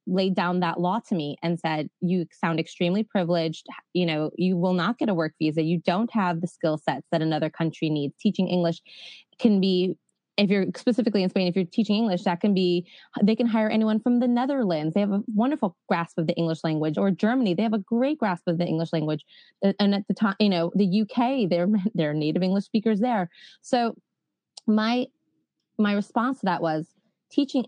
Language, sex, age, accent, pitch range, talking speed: English, female, 20-39, American, 170-220 Hz, 210 wpm